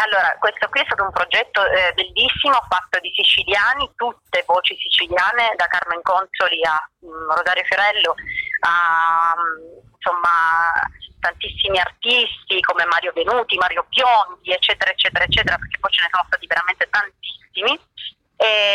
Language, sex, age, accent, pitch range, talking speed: Italian, female, 30-49, native, 175-225 Hz, 130 wpm